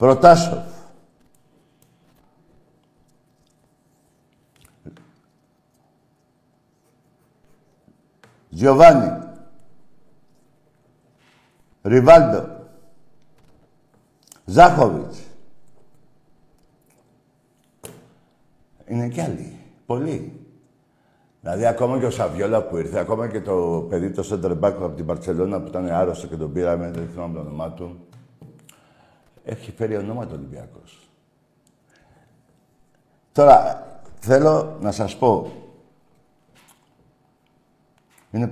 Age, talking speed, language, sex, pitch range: 60-79, 70 wpm, Greek, male, 95-135 Hz